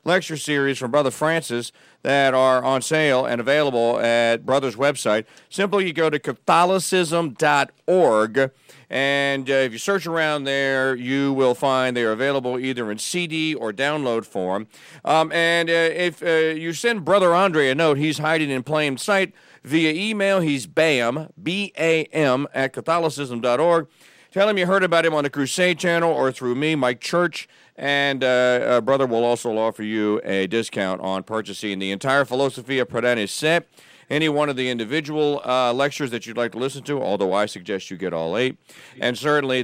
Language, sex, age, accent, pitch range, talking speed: English, male, 40-59, American, 130-170 Hz, 175 wpm